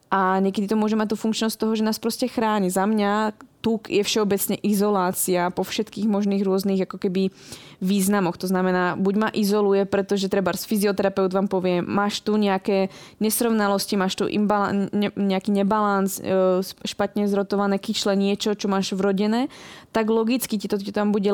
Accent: native